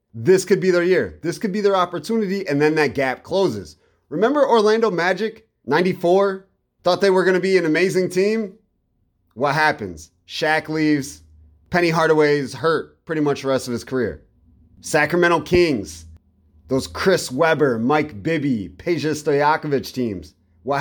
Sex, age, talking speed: male, 30-49, 155 wpm